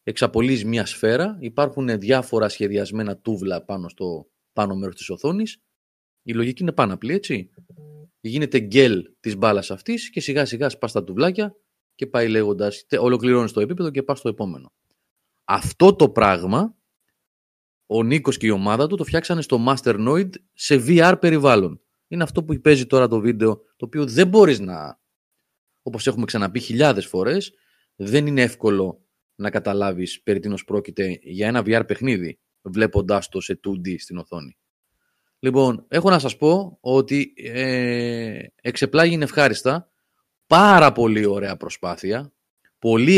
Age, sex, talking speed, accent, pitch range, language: 30-49, male, 145 wpm, native, 105-150 Hz, Greek